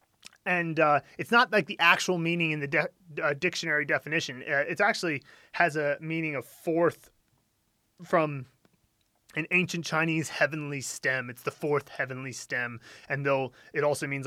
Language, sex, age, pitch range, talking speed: English, male, 20-39, 135-170 Hz, 155 wpm